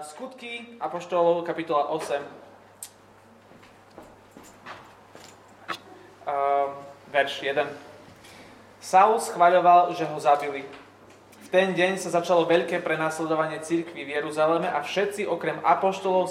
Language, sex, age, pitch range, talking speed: Slovak, male, 20-39, 145-180 Hz, 95 wpm